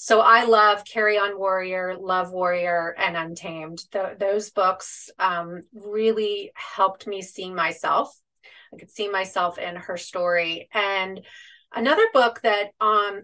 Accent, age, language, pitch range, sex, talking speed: American, 30-49, English, 180-215 Hz, female, 135 wpm